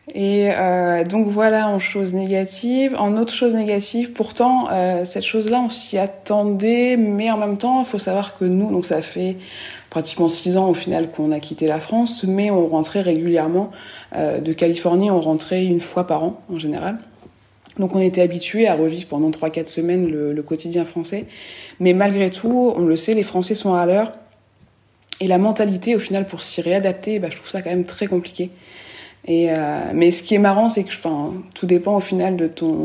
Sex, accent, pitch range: female, French, 175-215 Hz